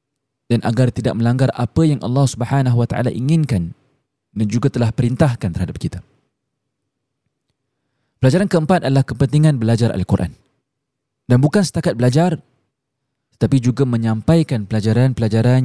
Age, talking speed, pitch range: 20-39, 120 wpm, 120-145 Hz